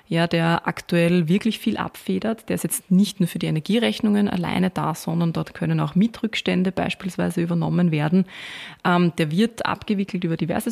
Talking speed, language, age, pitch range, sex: 170 wpm, German, 20-39, 165-190 Hz, female